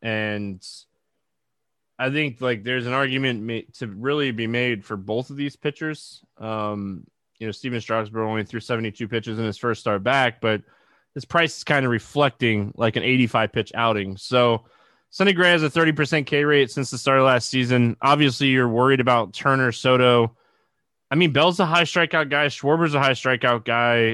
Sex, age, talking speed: male, 20-39, 185 wpm